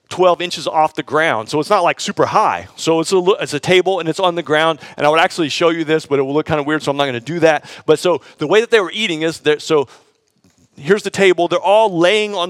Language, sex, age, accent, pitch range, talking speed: English, male, 40-59, American, 150-185 Hz, 290 wpm